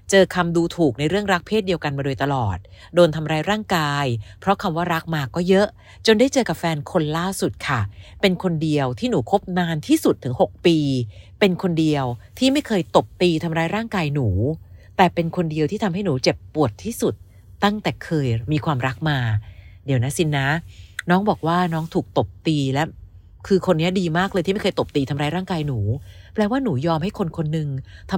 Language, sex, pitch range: Thai, female, 130-185 Hz